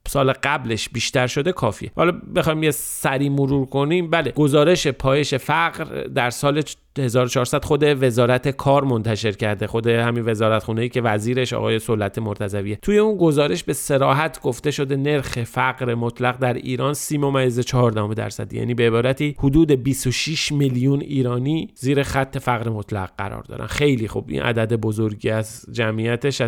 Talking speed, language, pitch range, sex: 150 wpm, Persian, 125-150 Hz, male